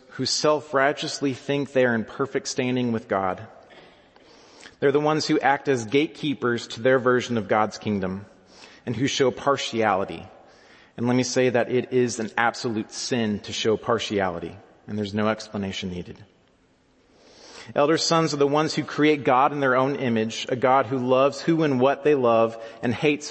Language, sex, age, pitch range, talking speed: English, male, 30-49, 105-135 Hz, 175 wpm